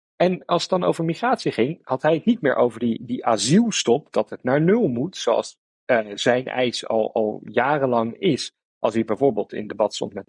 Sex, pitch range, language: male, 115-165 Hz, Dutch